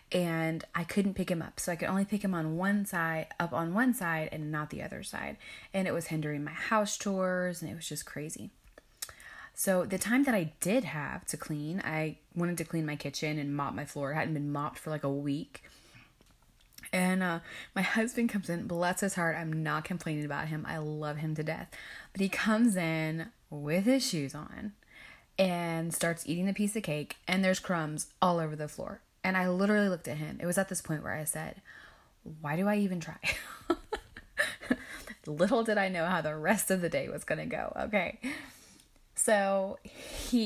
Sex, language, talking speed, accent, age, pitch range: female, English, 210 wpm, American, 20-39, 155-195 Hz